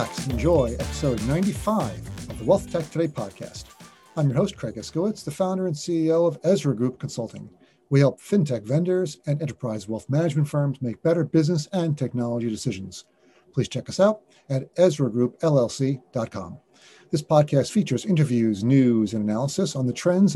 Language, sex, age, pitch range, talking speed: English, male, 40-59, 125-170 Hz, 155 wpm